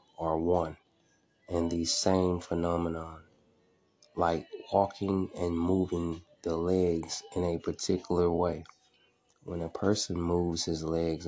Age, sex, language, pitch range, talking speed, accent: 30-49, male, English, 85-100 Hz, 115 wpm, American